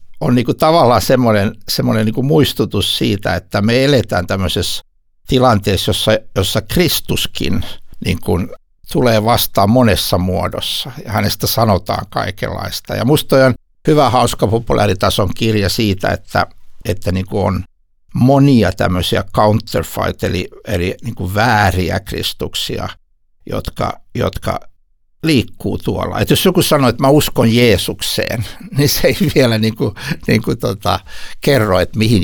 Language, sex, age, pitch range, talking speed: Finnish, male, 60-79, 95-120 Hz, 130 wpm